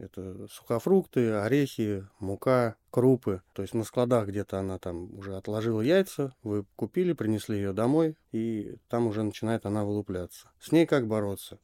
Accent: native